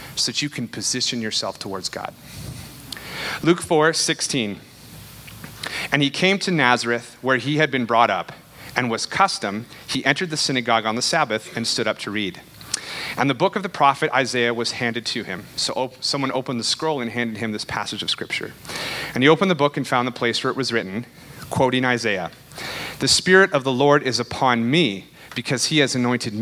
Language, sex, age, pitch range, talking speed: English, male, 30-49, 120-145 Hz, 200 wpm